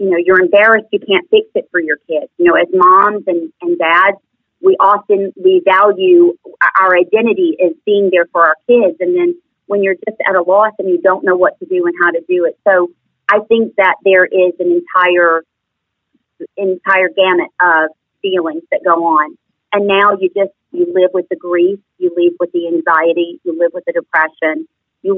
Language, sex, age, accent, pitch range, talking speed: English, female, 40-59, American, 175-215 Hz, 205 wpm